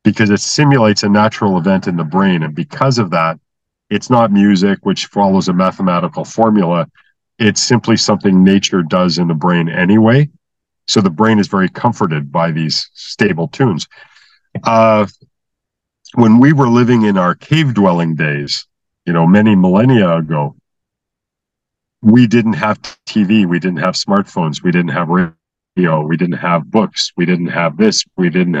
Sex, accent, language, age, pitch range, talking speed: male, American, English, 40-59, 85-110 Hz, 160 wpm